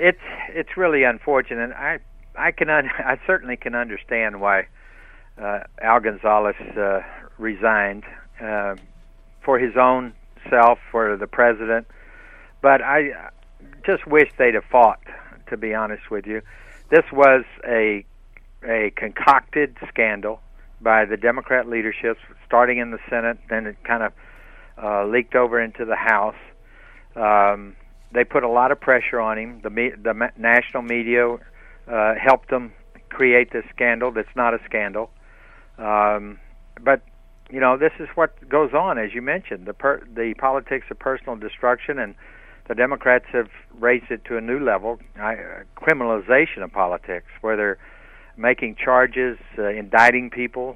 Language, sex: English, male